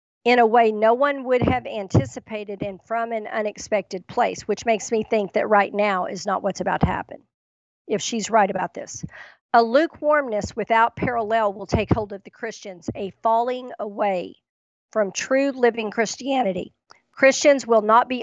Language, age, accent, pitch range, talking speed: English, 50-69, American, 205-240 Hz, 170 wpm